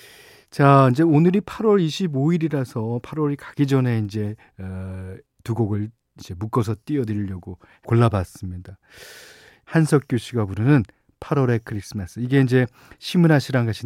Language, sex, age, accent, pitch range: Korean, male, 40-59, native, 105-155 Hz